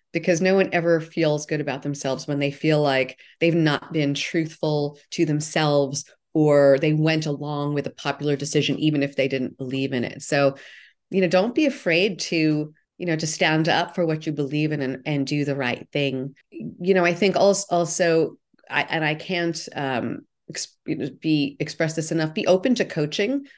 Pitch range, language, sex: 145-170 Hz, English, female